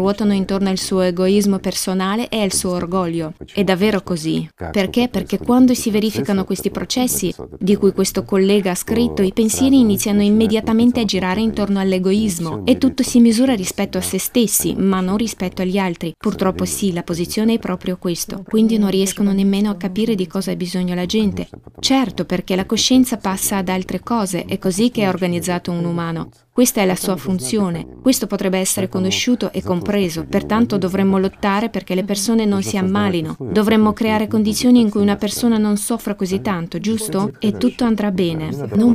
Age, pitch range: 20-39, 190-220 Hz